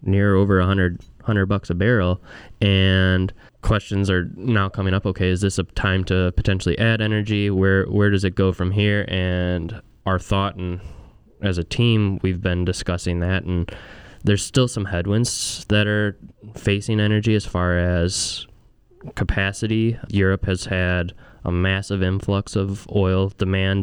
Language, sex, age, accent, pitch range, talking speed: English, male, 10-29, American, 95-105 Hz, 160 wpm